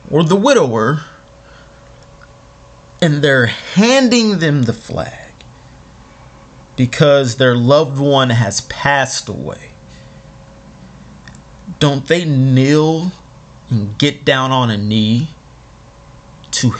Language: English